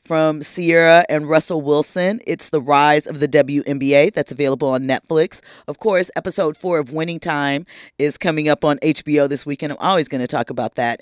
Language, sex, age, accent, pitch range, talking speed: English, female, 30-49, American, 150-205 Hz, 195 wpm